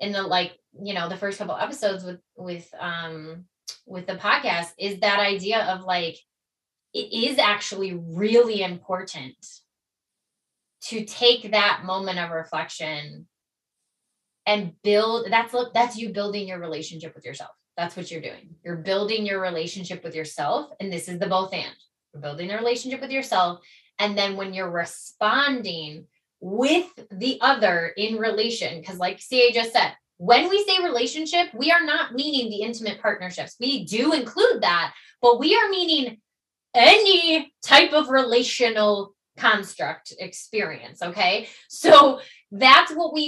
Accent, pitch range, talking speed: American, 180-255 Hz, 150 wpm